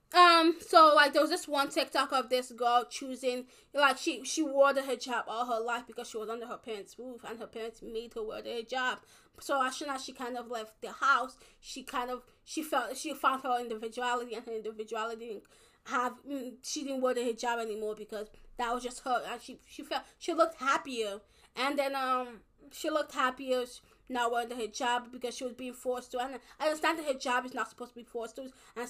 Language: English